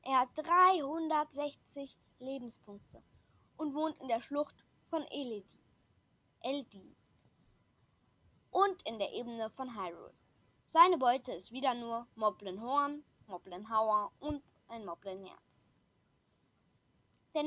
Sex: female